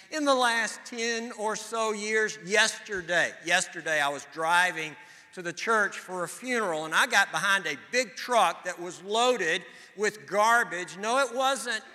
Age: 60-79